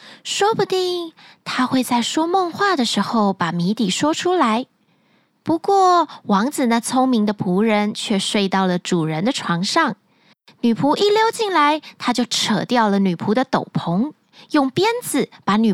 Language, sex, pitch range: Chinese, female, 205-310 Hz